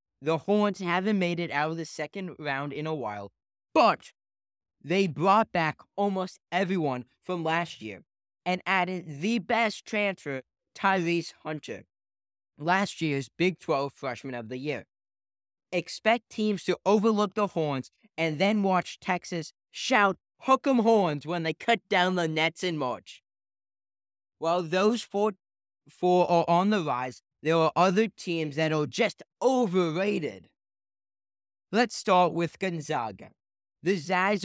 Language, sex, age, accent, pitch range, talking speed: English, male, 20-39, American, 145-190 Hz, 140 wpm